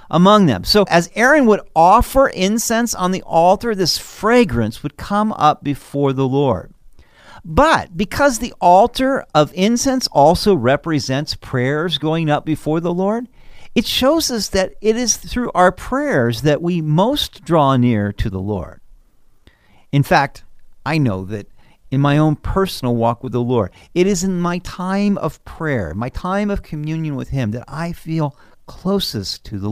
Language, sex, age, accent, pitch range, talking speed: English, male, 50-69, American, 125-190 Hz, 165 wpm